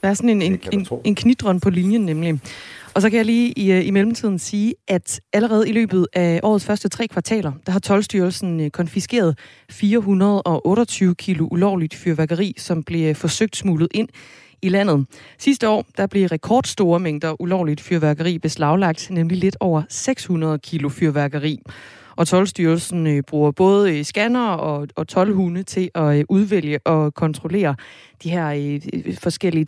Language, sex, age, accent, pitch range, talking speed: Danish, female, 30-49, native, 160-205 Hz, 150 wpm